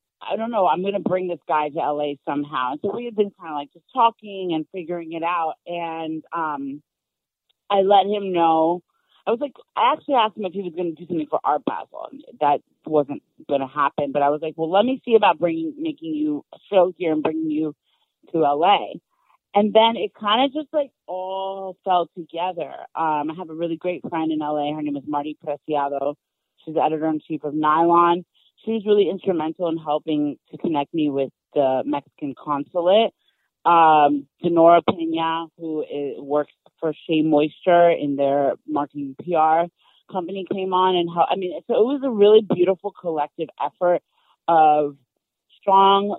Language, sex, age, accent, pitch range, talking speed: English, female, 40-59, American, 150-185 Hz, 190 wpm